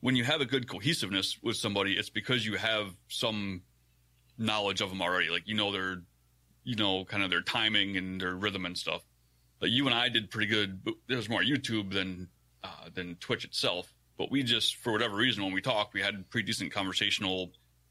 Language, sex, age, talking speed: English, male, 30-49, 205 wpm